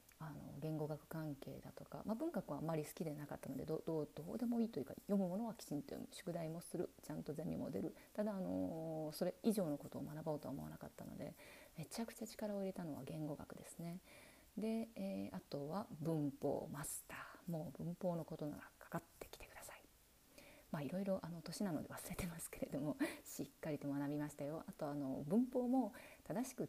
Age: 30-49